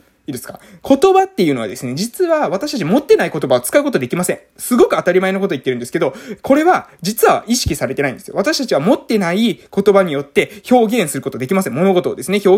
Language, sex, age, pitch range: Japanese, male, 20-39, 180-295 Hz